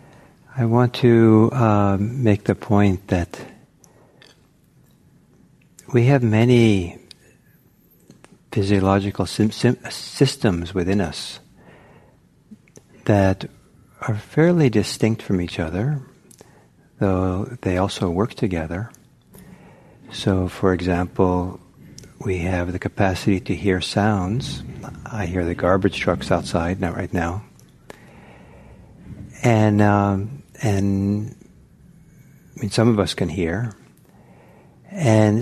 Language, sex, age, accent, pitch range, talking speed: English, male, 50-69, American, 95-120 Hz, 100 wpm